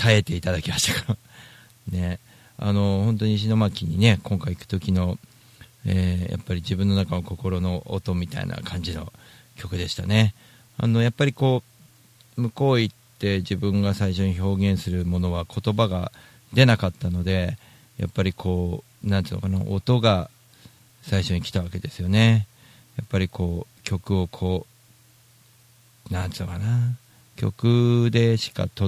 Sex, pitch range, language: male, 95-120 Hz, Japanese